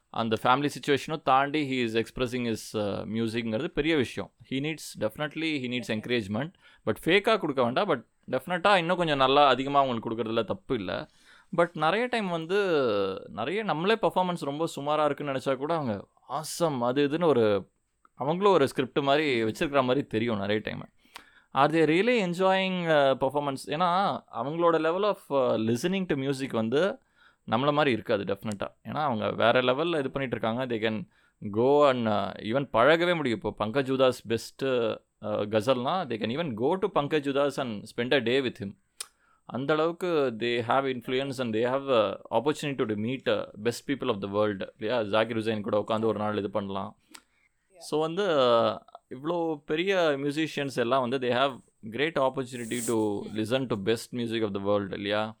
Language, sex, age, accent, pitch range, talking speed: Tamil, male, 20-39, native, 115-155 Hz, 165 wpm